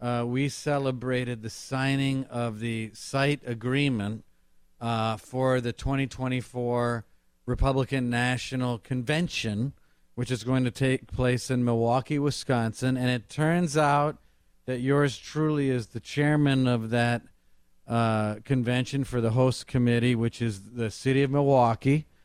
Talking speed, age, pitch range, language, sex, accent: 130 wpm, 50-69, 120-135 Hz, English, male, American